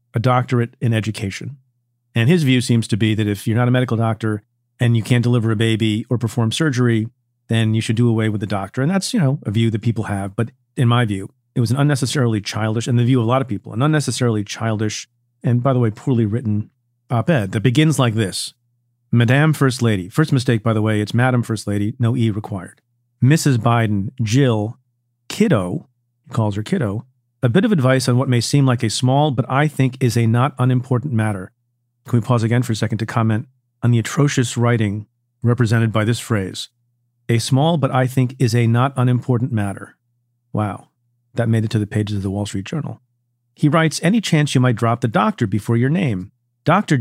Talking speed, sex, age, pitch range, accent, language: 215 wpm, male, 40-59, 115-130 Hz, American, English